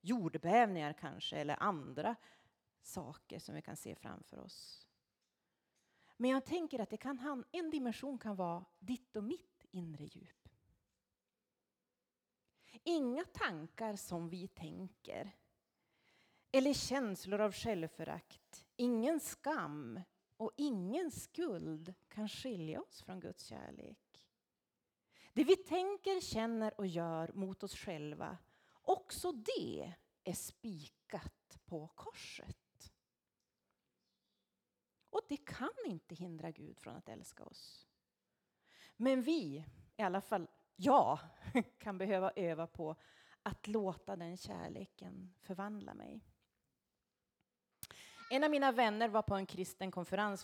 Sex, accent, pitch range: female, native, 175-260 Hz